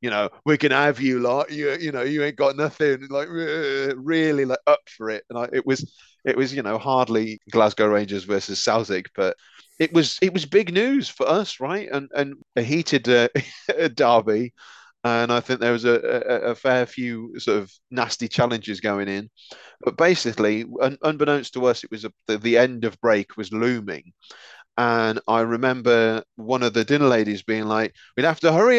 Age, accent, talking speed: 30-49, British, 195 wpm